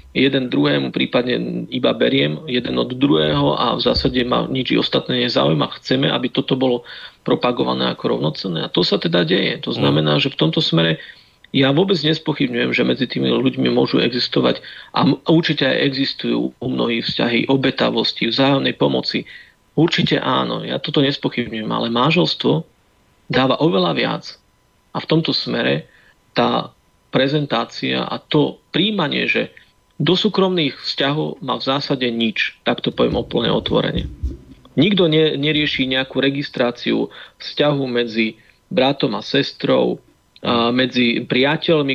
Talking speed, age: 140 wpm, 40-59